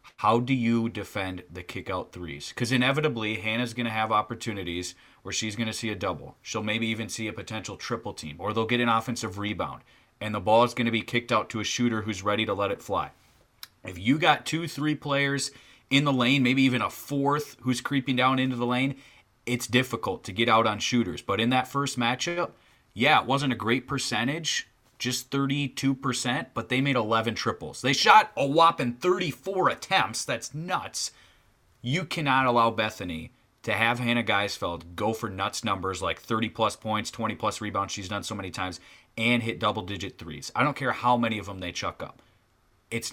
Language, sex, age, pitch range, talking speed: English, male, 30-49, 105-125 Hz, 200 wpm